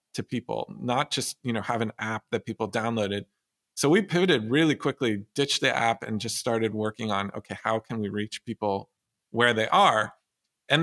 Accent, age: American, 40-59